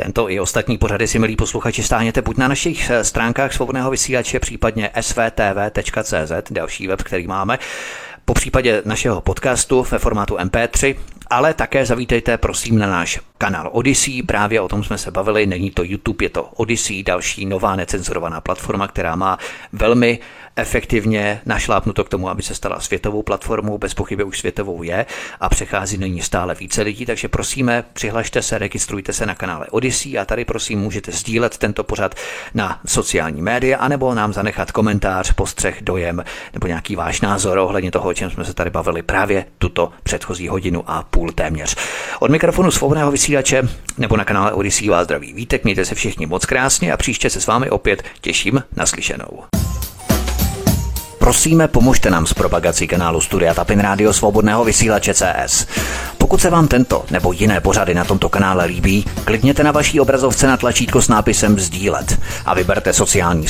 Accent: native